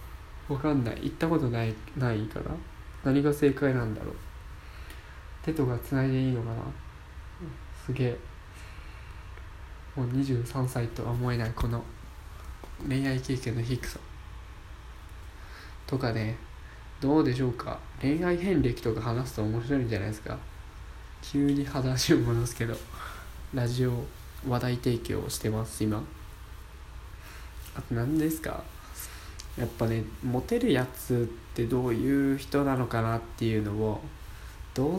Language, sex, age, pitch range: Japanese, male, 20-39, 90-130 Hz